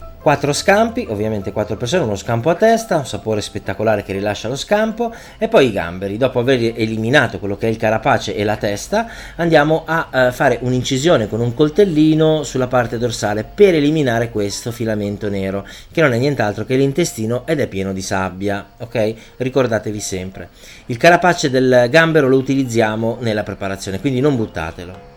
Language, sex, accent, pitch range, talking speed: Italian, male, native, 105-145 Hz, 170 wpm